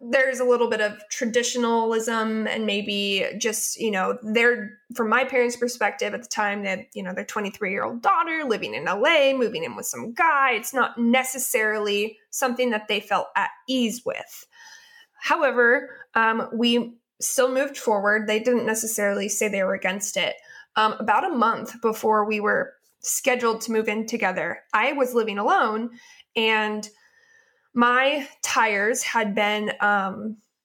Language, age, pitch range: English, 20-39, 215-255 Hz